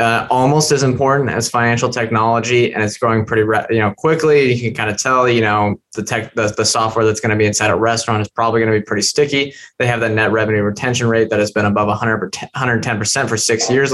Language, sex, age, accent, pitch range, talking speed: English, male, 20-39, American, 110-130 Hz, 240 wpm